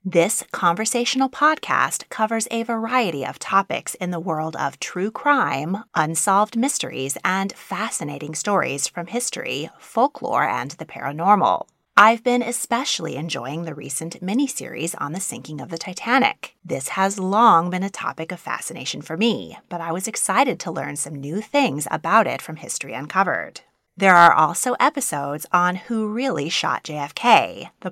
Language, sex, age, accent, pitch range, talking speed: English, female, 30-49, American, 165-230 Hz, 155 wpm